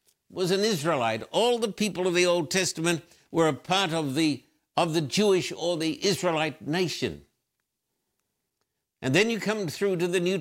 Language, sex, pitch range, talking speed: English, male, 150-185 Hz, 175 wpm